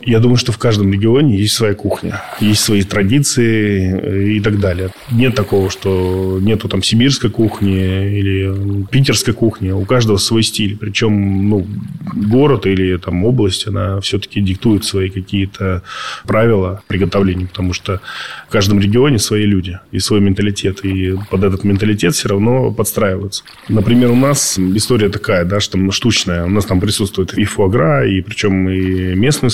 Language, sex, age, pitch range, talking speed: Russian, male, 20-39, 95-110 Hz, 155 wpm